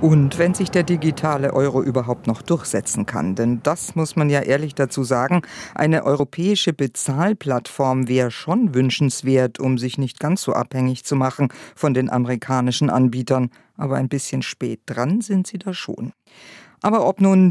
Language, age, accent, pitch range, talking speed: German, 50-69, German, 130-165 Hz, 165 wpm